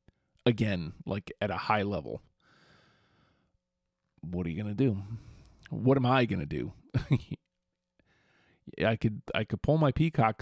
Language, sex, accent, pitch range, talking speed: English, male, American, 105-130 Hz, 150 wpm